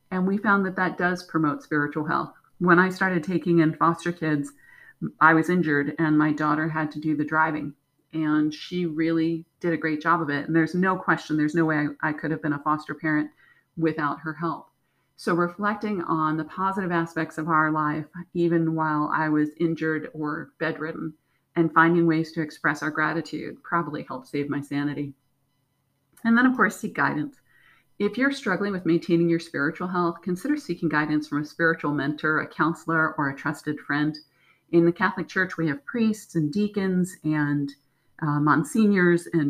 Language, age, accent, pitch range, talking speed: English, 40-59, American, 150-170 Hz, 185 wpm